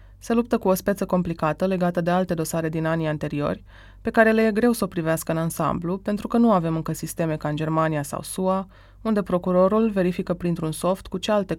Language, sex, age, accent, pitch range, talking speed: Romanian, female, 20-39, native, 160-205 Hz, 220 wpm